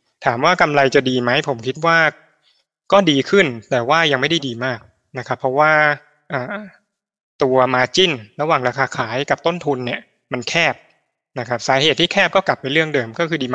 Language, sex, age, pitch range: Thai, male, 20-39, 125-160 Hz